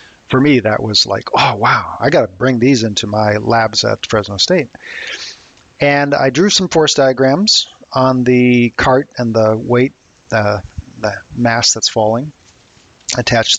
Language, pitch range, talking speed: English, 120-150 Hz, 160 wpm